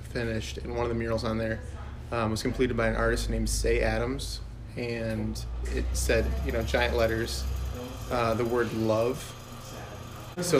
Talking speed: 165 wpm